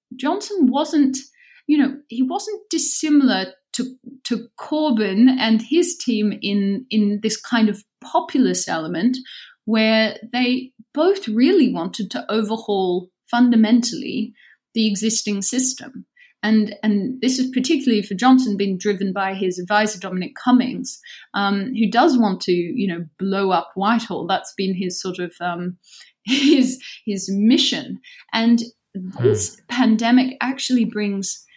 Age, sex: 30-49, female